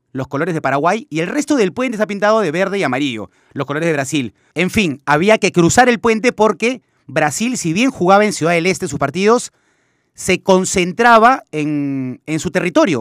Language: Spanish